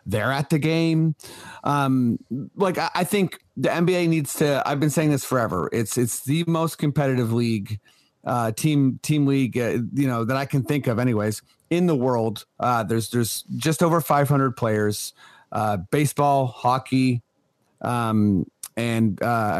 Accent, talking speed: American, 160 wpm